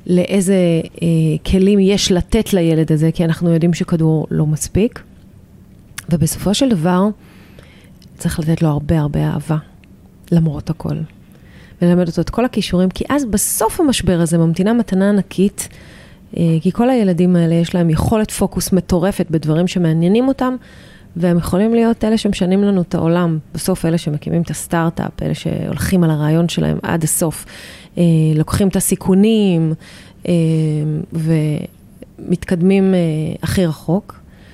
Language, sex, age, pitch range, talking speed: Hebrew, female, 30-49, 165-200 Hz, 130 wpm